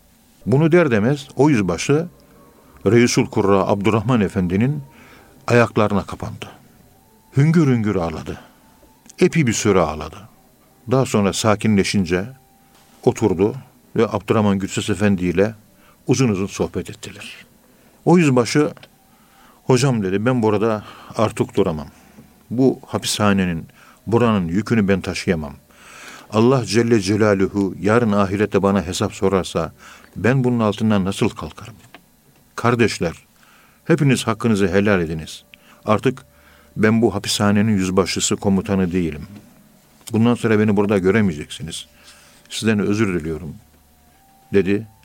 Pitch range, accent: 95-115 Hz, native